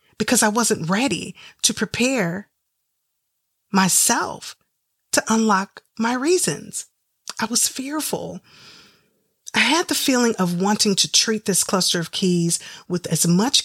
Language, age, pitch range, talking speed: English, 30-49, 185-225 Hz, 130 wpm